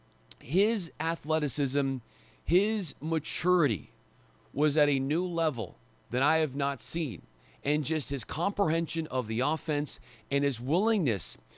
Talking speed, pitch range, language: 125 wpm, 115-165 Hz, English